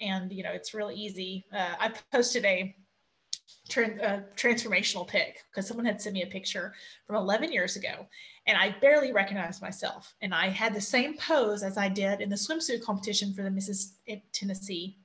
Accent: American